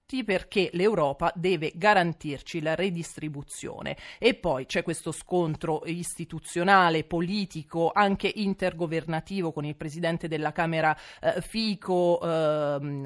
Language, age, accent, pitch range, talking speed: Italian, 30-49, native, 155-180 Hz, 105 wpm